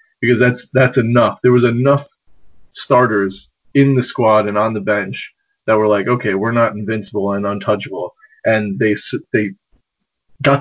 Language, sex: English, male